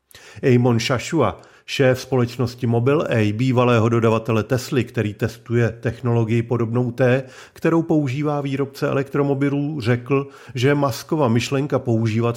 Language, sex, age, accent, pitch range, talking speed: Czech, male, 40-59, native, 115-140 Hz, 105 wpm